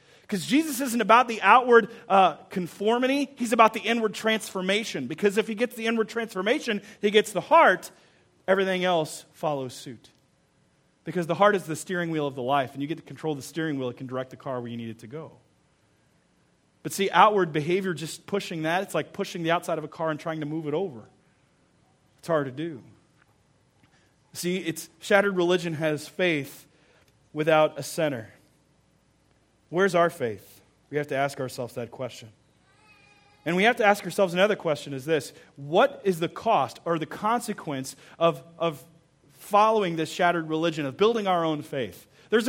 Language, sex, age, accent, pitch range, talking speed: English, male, 30-49, American, 150-205 Hz, 180 wpm